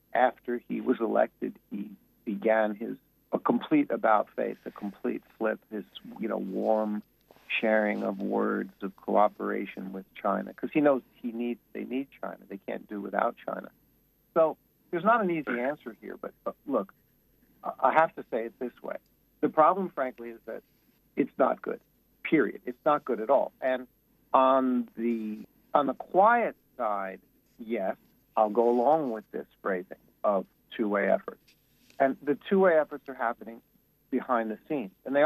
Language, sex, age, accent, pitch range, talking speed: English, male, 50-69, American, 105-130 Hz, 165 wpm